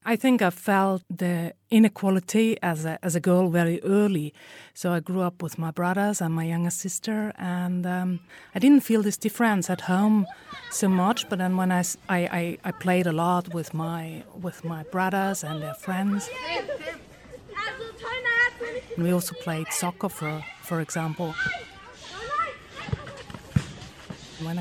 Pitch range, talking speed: 170-215 Hz, 150 wpm